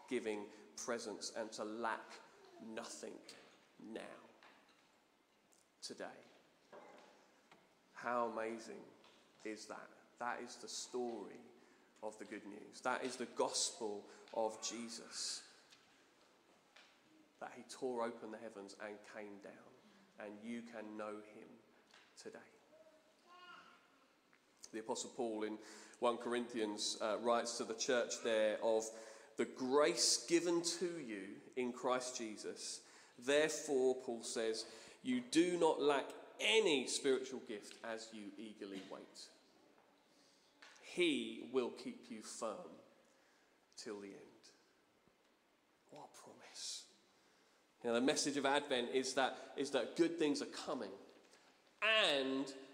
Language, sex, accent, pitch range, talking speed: English, male, British, 110-145 Hz, 115 wpm